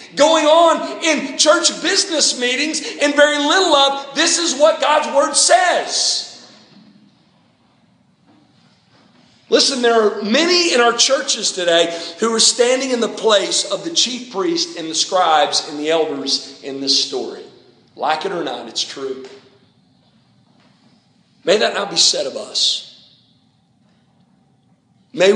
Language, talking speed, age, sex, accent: English, 135 wpm, 40-59, male, American